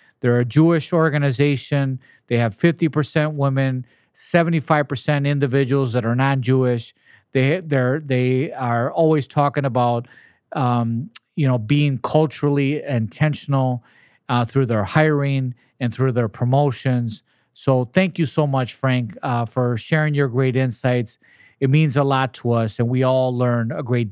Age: 40-59